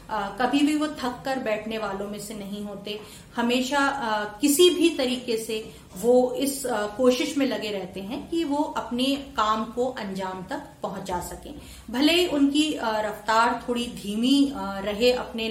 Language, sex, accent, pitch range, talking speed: Hindi, female, native, 205-260 Hz, 165 wpm